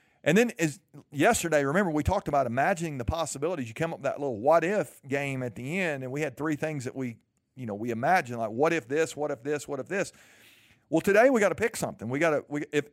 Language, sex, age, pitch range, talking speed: English, male, 50-69, 135-185 Hz, 260 wpm